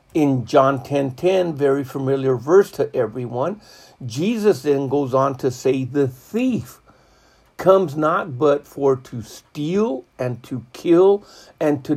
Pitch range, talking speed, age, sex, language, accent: 130-185 Hz, 140 wpm, 60-79, male, English, American